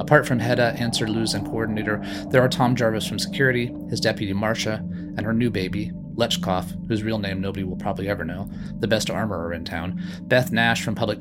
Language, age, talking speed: English, 30-49, 205 wpm